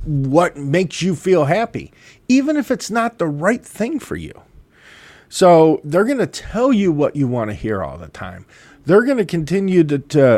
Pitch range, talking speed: 135-185 Hz, 195 wpm